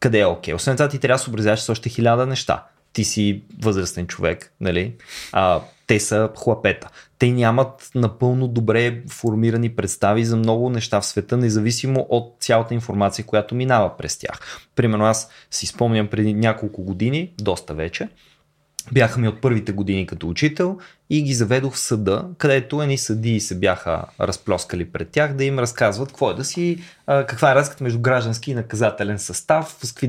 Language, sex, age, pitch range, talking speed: Bulgarian, male, 20-39, 110-135 Hz, 175 wpm